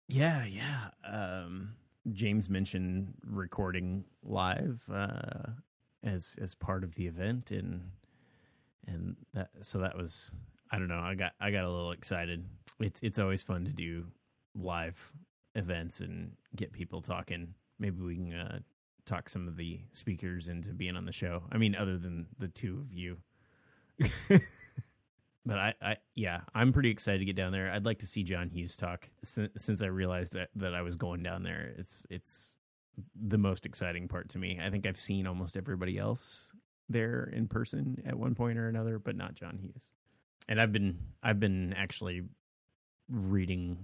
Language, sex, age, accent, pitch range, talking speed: English, male, 30-49, American, 90-110 Hz, 175 wpm